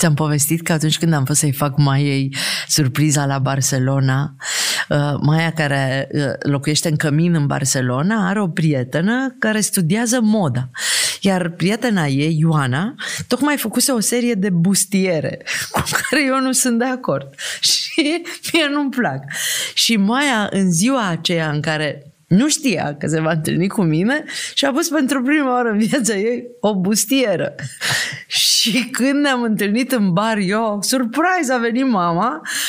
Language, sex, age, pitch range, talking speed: Romanian, female, 30-49, 170-260 Hz, 155 wpm